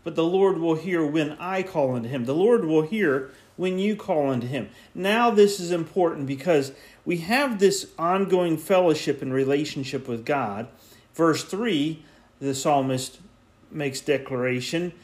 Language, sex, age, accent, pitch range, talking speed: English, male, 40-59, American, 125-180 Hz, 155 wpm